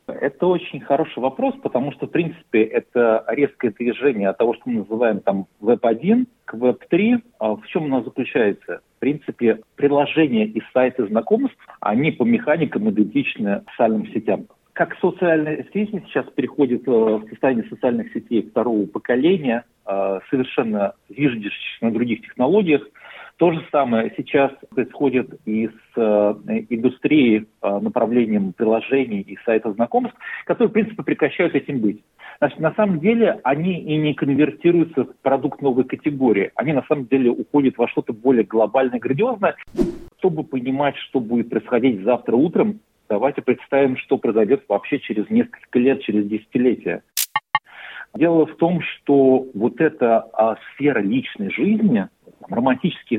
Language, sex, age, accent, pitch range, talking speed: Russian, male, 50-69, native, 115-170 Hz, 140 wpm